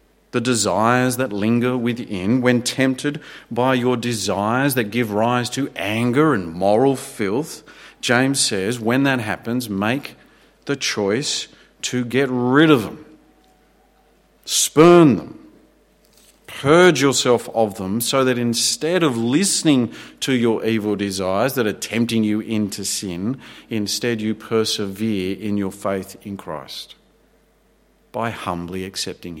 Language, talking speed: English, 130 wpm